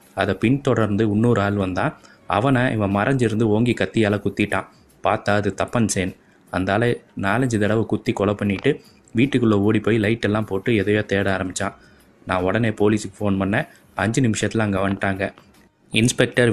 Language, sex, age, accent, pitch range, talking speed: Tamil, male, 20-39, native, 100-115 Hz, 145 wpm